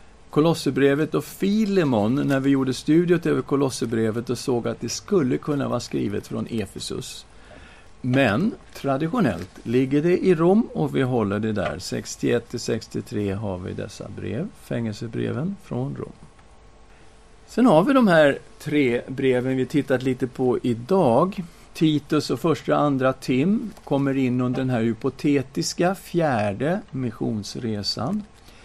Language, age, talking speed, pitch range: Swedish, 50-69, 130 wpm, 110-150 Hz